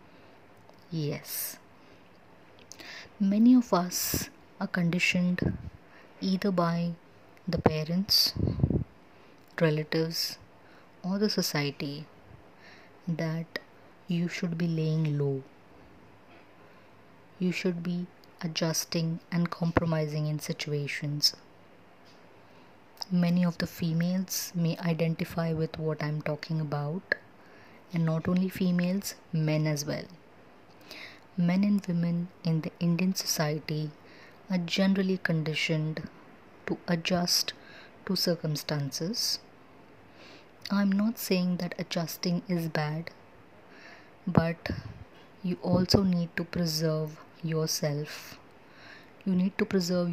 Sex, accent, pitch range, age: female, Indian, 155-180 Hz, 20-39